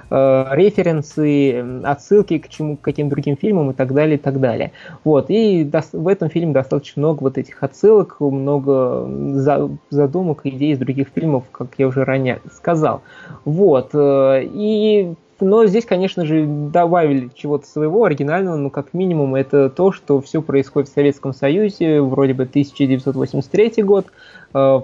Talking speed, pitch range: 150 wpm, 135-160 Hz